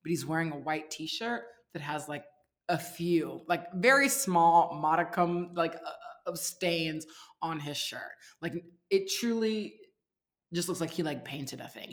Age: 20-39